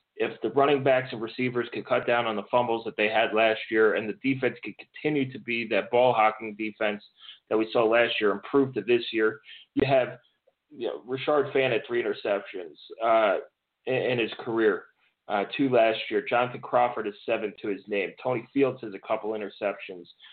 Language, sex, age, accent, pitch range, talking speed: English, male, 30-49, American, 110-140 Hz, 200 wpm